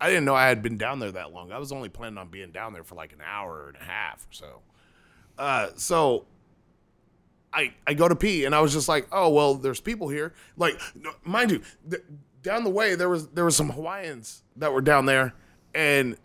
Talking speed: 235 wpm